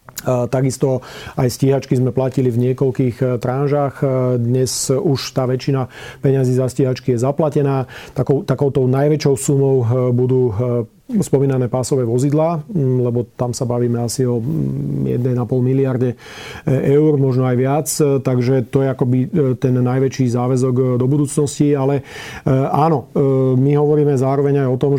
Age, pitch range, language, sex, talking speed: 40-59, 125-140 Hz, Slovak, male, 130 wpm